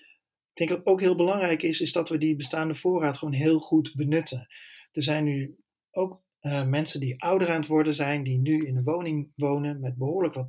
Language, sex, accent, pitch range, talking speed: Dutch, male, Dutch, 140-165 Hz, 215 wpm